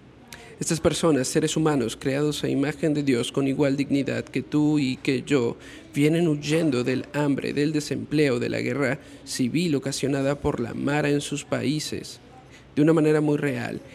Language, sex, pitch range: Spanish, male, 135-160 Hz